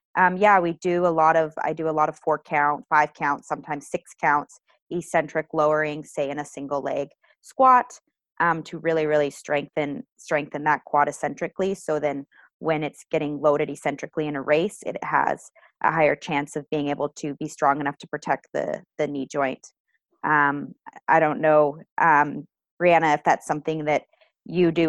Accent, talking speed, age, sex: American, 185 wpm, 20-39, female